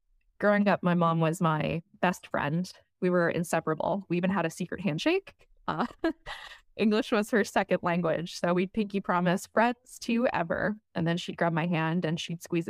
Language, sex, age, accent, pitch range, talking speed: English, female, 20-39, American, 155-195 Hz, 185 wpm